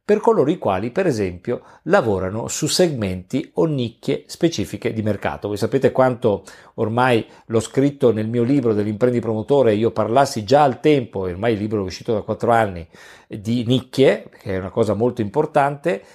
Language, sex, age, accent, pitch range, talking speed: Italian, male, 50-69, native, 105-135 Hz, 170 wpm